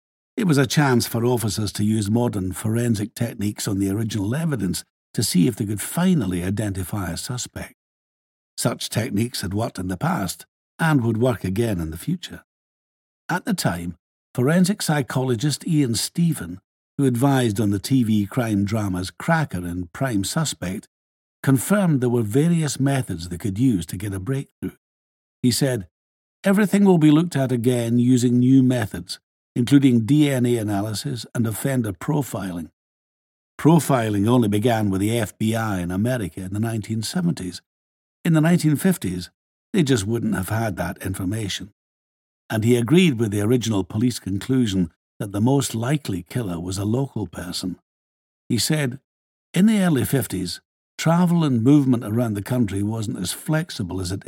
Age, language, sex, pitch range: 60-79, English, male, 95-135 Hz